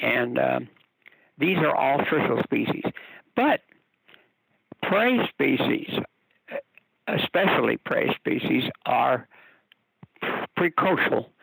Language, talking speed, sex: English, 80 wpm, male